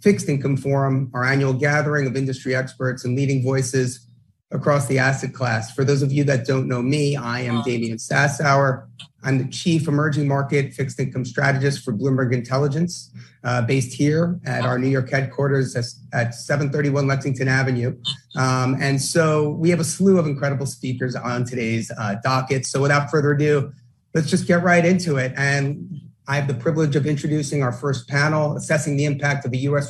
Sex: male